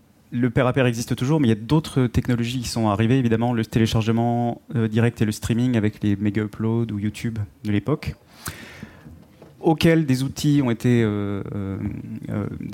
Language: French